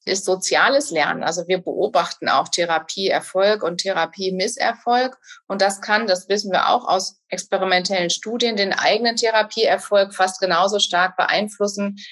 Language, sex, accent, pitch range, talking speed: German, female, German, 185-215 Hz, 135 wpm